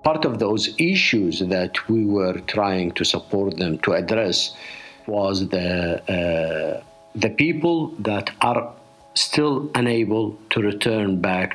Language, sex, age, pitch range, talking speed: English, male, 50-69, 95-130 Hz, 130 wpm